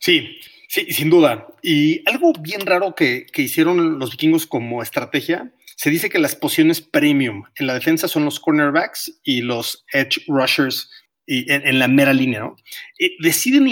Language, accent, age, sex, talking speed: Spanish, Mexican, 30-49, male, 175 wpm